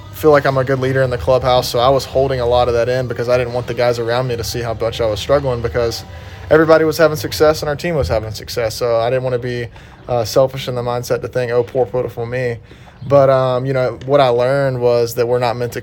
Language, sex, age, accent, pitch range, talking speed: English, male, 20-39, American, 115-125 Hz, 285 wpm